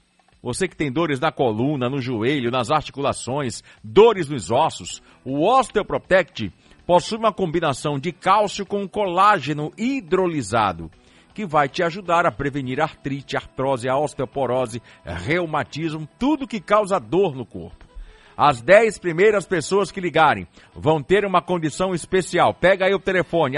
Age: 60-79